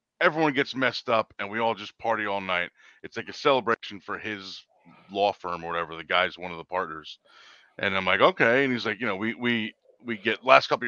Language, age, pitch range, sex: English, 30-49, 95-135 Hz, male